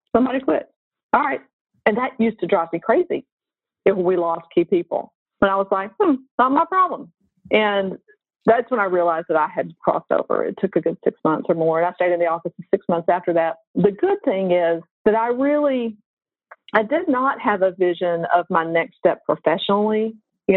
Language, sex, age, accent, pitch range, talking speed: English, female, 50-69, American, 165-220 Hz, 205 wpm